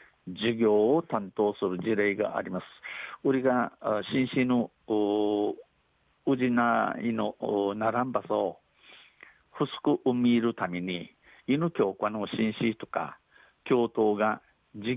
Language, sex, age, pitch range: Japanese, male, 50-69, 105-125 Hz